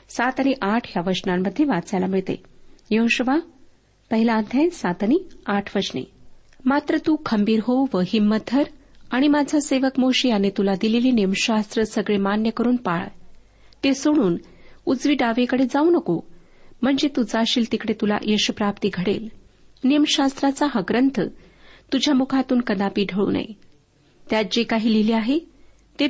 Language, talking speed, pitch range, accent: Marathi, 130 wpm, 200-270 Hz, native